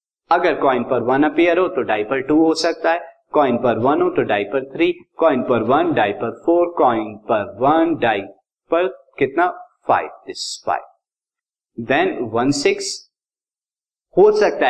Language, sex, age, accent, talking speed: Hindi, male, 50-69, native, 140 wpm